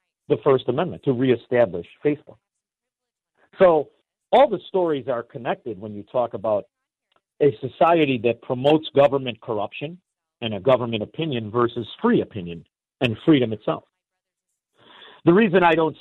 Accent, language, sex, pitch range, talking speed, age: American, English, male, 145-205 Hz, 135 wpm, 50-69